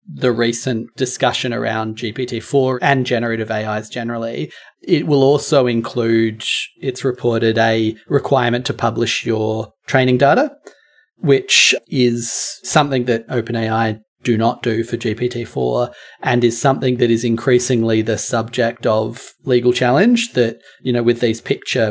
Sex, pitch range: male, 115-130 Hz